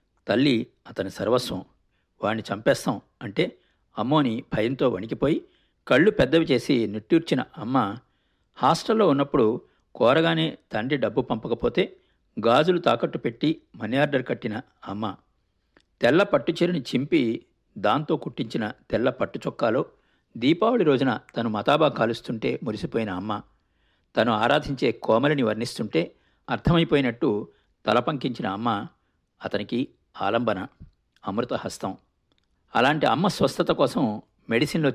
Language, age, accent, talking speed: Telugu, 60-79, native, 95 wpm